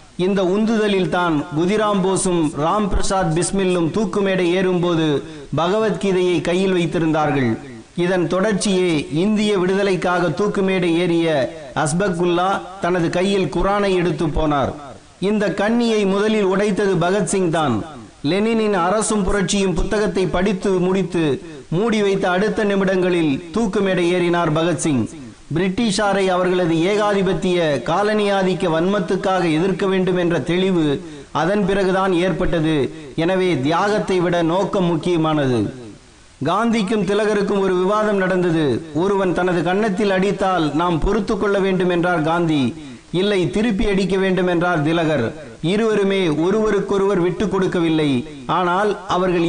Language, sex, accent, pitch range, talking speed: Tamil, male, native, 170-200 Hz, 110 wpm